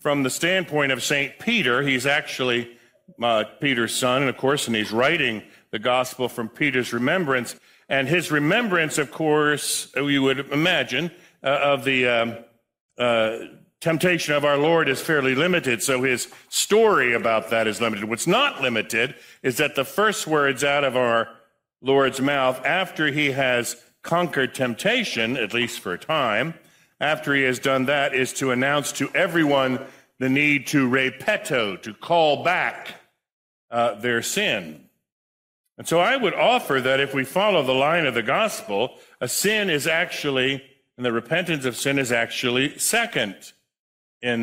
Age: 50-69